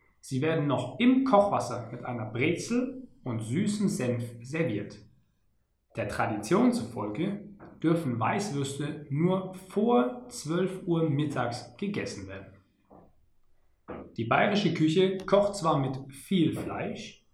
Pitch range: 120-185 Hz